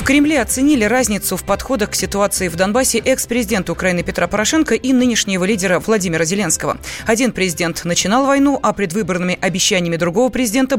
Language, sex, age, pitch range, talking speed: Russian, female, 20-39, 175-235 Hz, 155 wpm